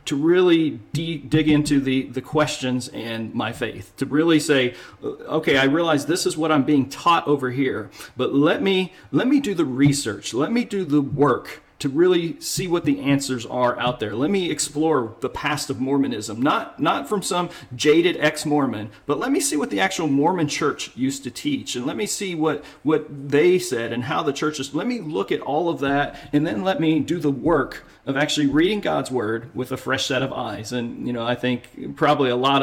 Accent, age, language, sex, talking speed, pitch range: American, 40-59, English, male, 215 wpm, 130-160 Hz